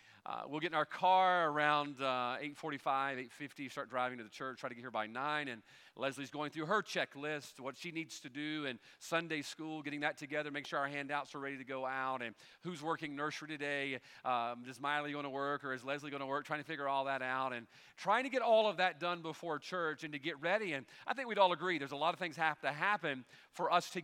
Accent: American